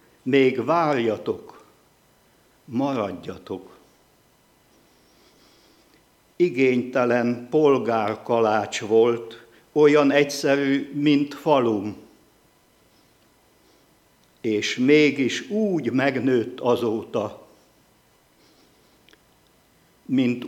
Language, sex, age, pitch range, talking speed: Hungarian, male, 60-79, 115-140 Hz, 45 wpm